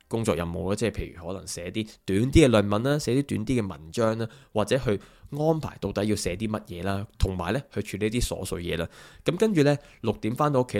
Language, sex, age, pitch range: Chinese, male, 20-39, 95-125 Hz